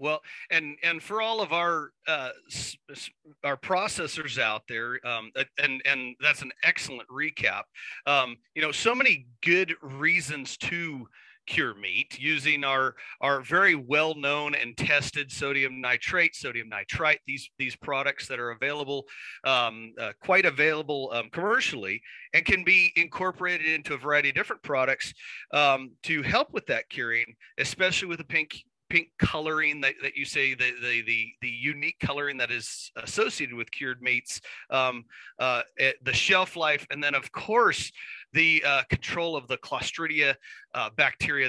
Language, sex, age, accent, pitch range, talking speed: English, male, 40-59, American, 130-160 Hz, 160 wpm